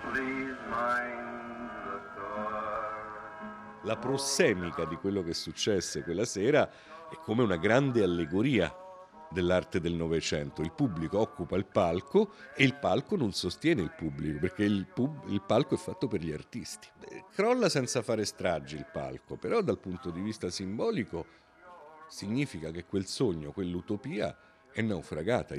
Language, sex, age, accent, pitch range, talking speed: Italian, male, 50-69, native, 90-130 Hz, 130 wpm